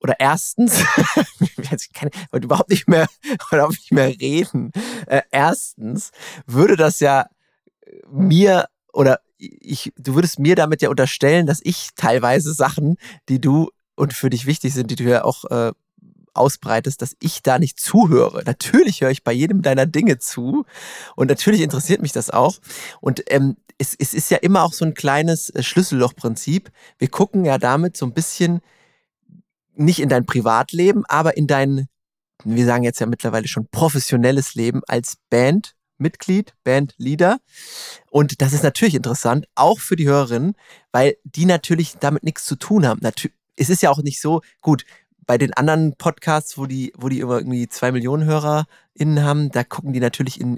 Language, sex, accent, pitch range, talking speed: German, male, German, 130-170 Hz, 165 wpm